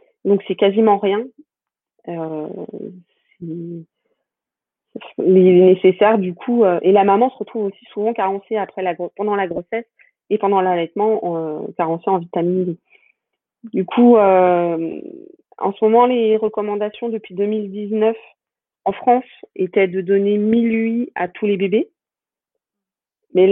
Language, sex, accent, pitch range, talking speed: French, female, French, 180-215 Hz, 145 wpm